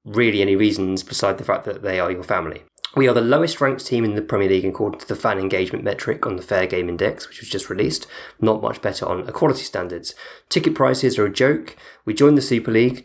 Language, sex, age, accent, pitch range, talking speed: English, male, 20-39, British, 105-130 Hz, 240 wpm